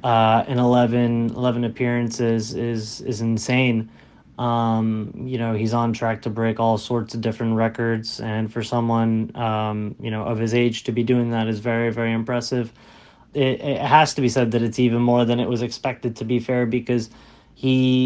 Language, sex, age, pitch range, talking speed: English, male, 30-49, 115-125 Hz, 195 wpm